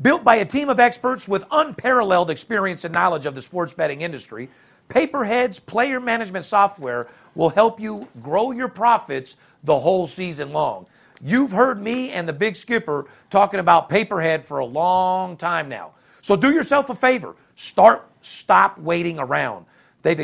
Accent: American